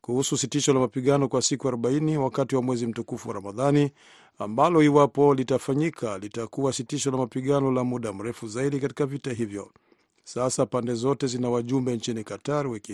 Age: 50-69